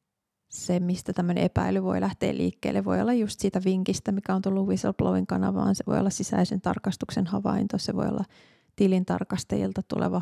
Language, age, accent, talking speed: Finnish, 30-49, native, 160 wpm